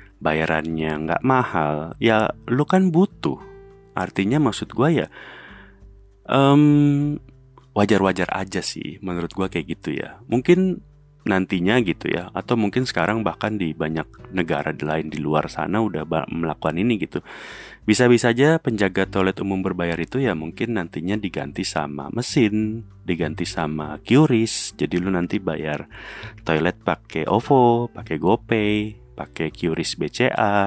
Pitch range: 80-115 Hz